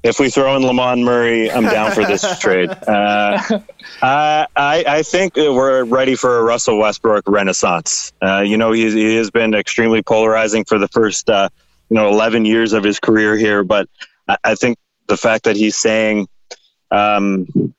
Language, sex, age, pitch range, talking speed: English, male, 30-49, 110-130 Hz, 175 wpm